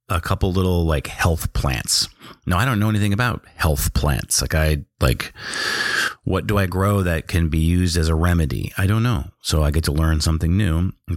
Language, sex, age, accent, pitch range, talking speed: English, male, 30-49, American, 85-105 Hz, 210 wpm